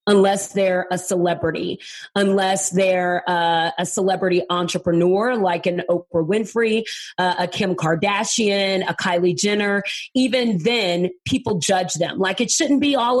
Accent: American